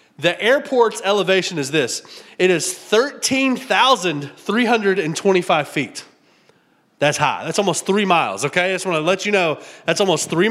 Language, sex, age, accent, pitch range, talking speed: English, male, 30-49, American, 160-215 Hz, 150 wpm